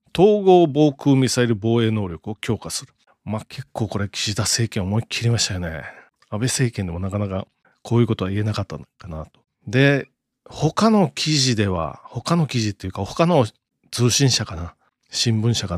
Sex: male